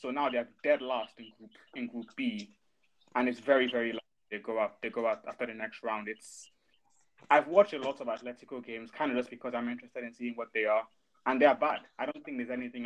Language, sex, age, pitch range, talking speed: English, male, 20-39, 115-150 Hz, 245 wpm